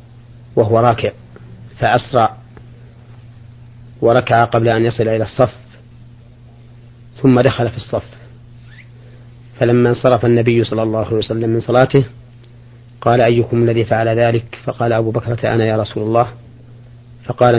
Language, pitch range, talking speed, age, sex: Arabic, 115-120 Hz, 120 wpm, 40-59, male